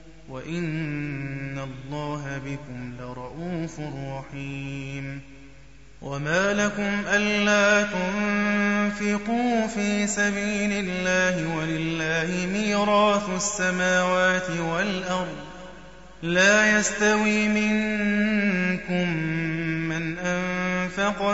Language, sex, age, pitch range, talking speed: Arabic, male, 20-39, 150-200 Hz, 60 wpm